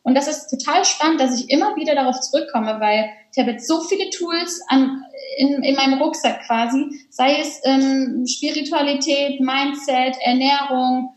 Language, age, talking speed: German, 10-29, 160 wpm